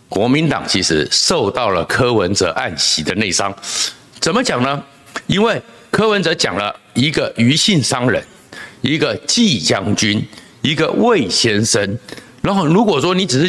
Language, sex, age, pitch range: Chinese, male, 60-79, 140-195 Hz